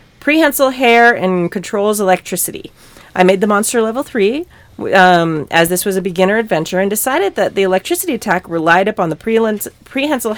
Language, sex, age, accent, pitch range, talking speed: English, female, 30-49, American, 180-245 Hz, 160 wpm